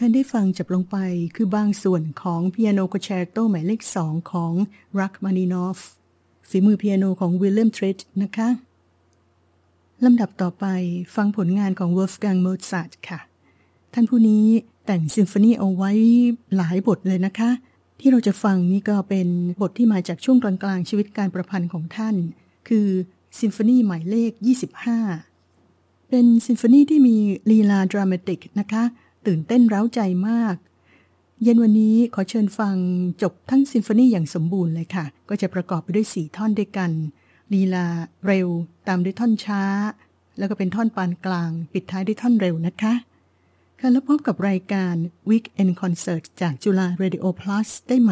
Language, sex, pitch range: Thai, female, 180-220 Hz